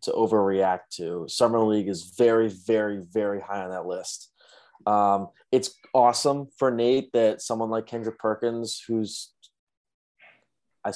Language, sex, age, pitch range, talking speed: English, male, 20-39, 105-120 Hz, 135 wpm